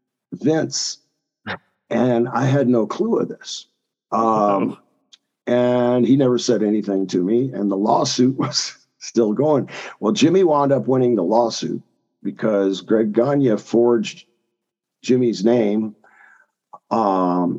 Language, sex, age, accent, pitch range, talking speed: English, male, 50-69, American, 100-125 Hz, 125 wpm